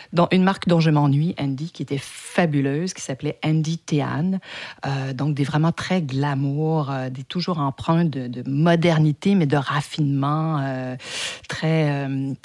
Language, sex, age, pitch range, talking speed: French, female, 50-69, 145-185 Hz, 160 wpm